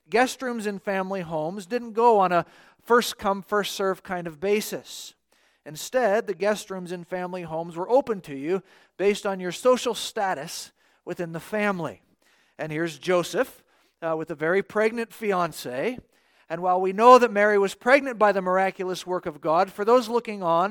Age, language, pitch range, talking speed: 40-59, English, 175-215 Hz, 180 wpm